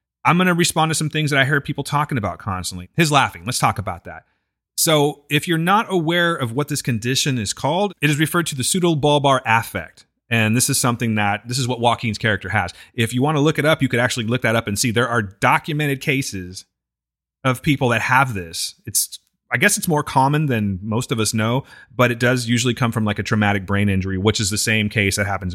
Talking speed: 240 wpm